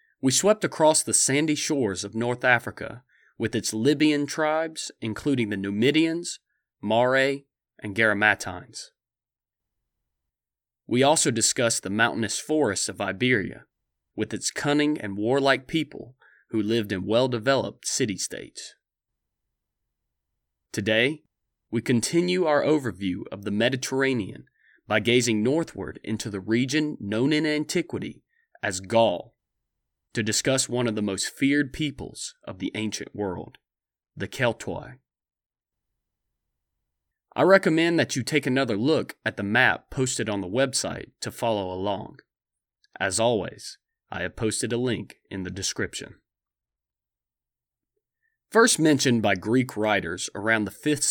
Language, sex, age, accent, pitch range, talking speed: English, male, 30-49, American, 105-145 Hz, 125 wpm